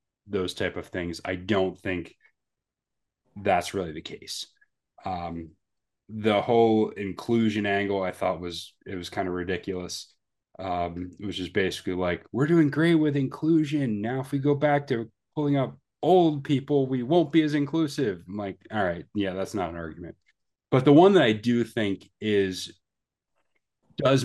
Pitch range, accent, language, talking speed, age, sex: 90-115 Hz, American, English, 170 wpm, 30-49, male